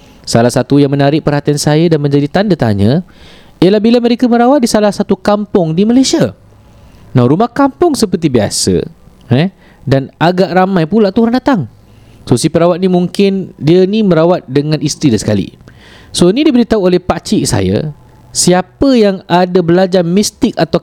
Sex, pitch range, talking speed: male, 145-195 Hz, 165 wpm